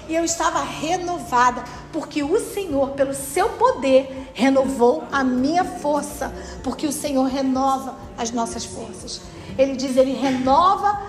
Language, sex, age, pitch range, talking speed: Portuguese, female, 50-69, 260-330 Hz, 135 wpm